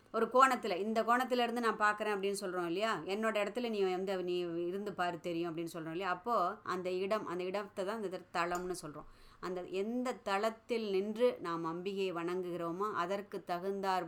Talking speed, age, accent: 160 wpm, 20-39, native